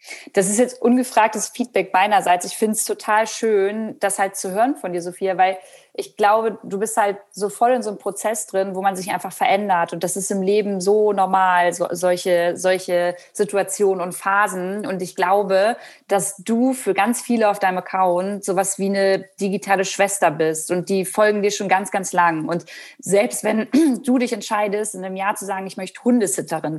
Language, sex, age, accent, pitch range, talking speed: German, female, 20-39, German, 185-215 Hz, 195 wpm